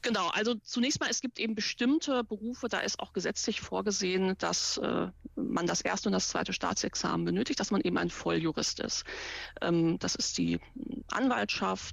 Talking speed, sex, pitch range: 165 wpm, female, 180-240 Hz